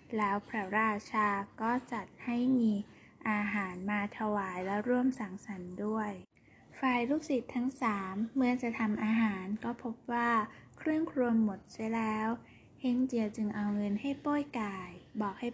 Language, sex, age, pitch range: Thai, female, 10-29, 210-245 Hz